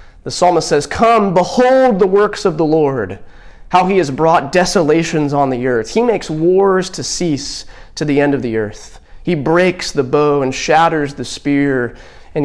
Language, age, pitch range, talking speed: English, 30-49, 135-185 Hz, 185 wpm